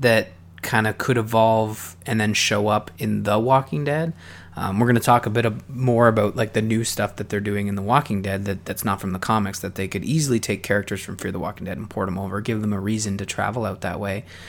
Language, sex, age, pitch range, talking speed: English, male, 20-39, 100-130 Hz, 265 wpm